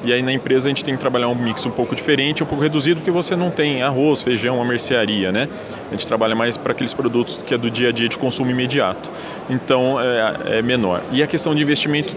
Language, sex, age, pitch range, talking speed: Portuguese, male, 20-39, 125-150 Hz, 250 wpm